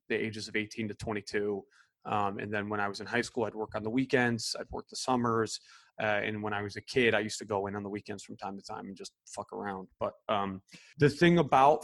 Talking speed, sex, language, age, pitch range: 265 wpm, male, English, 20-39, 105-120 Hz